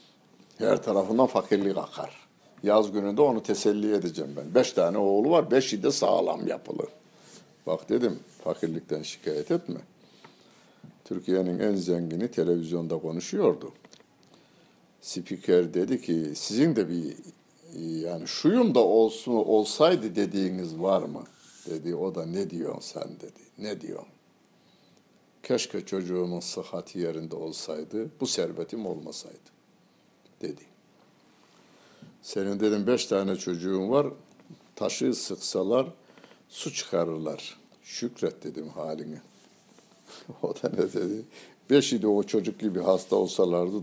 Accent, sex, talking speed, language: native, male, 115 wpm, Turkish